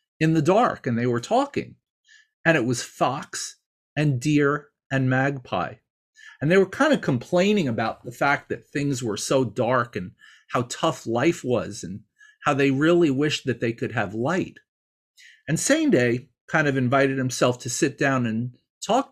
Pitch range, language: 125-190 Hz, English